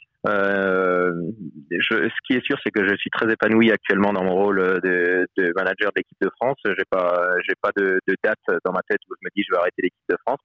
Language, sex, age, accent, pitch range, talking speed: French, male, 30-49, French, 95-140 Hz, 240 wpm